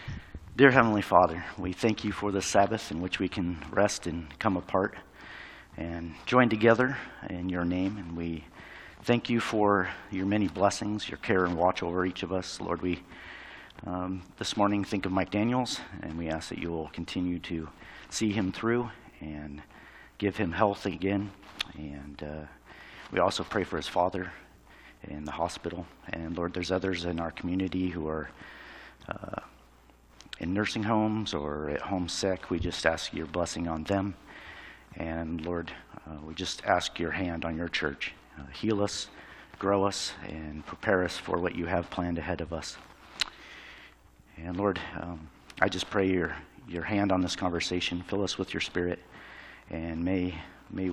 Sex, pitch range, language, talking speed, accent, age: male, 80-100 Hz, English, 170 wpm, American, 40-59